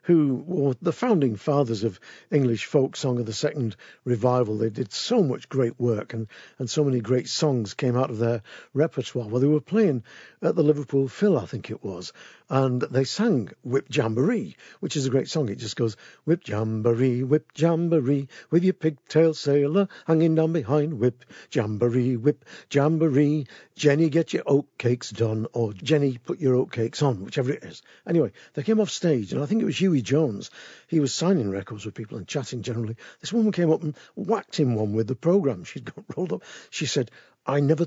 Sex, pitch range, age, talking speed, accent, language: male, 120-160 Hz, 50-69, 200 wpm, British, English